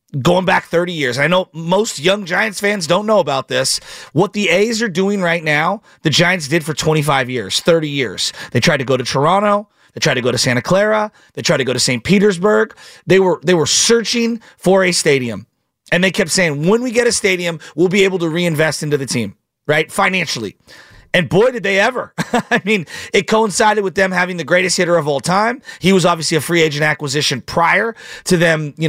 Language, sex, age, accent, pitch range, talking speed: English, male, 30-49, American, 155-215 Hz, 220 wpm